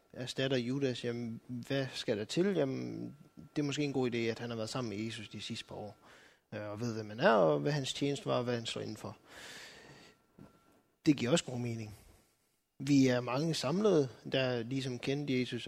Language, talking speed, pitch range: Danish, 205 wpm, 115-145 Hz